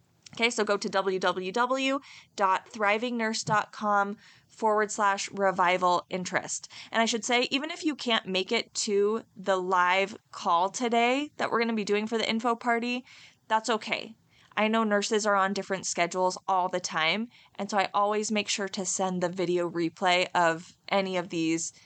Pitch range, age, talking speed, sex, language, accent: 185-225 Hz, 20-39, 165 wpm, female, English, American